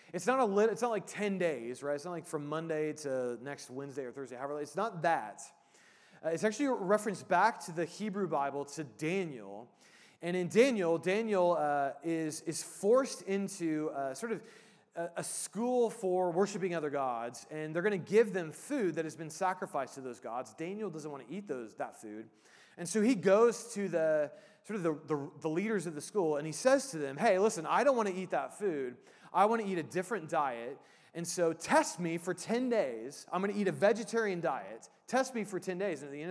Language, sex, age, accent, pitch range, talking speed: English, male, 30-49, American, 150-205 Hz, 225 wpm